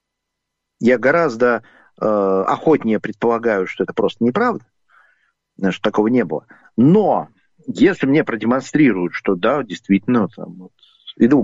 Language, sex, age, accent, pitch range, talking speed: Russian, male, 50-69, native, 90-125 Hz, 110 wpm